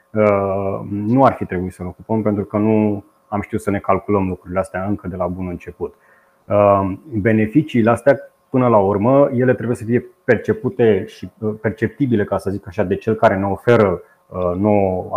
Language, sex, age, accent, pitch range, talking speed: Romanian, male, 30-49, native, 100-120 Hz, 175 wpm